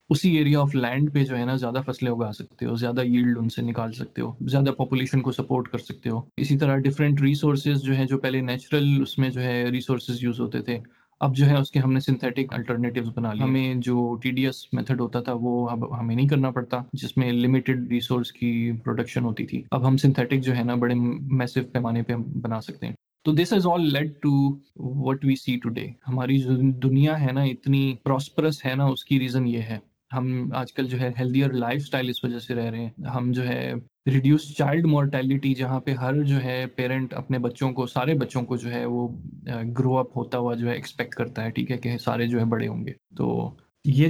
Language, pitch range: Urdu, 120-135 Hz